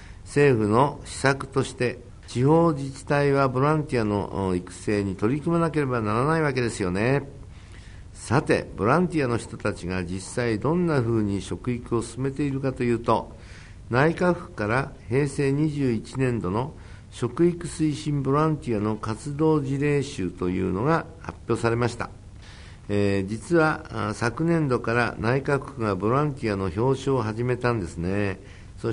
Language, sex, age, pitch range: Japanese, male, 60-79, 100-140 Hz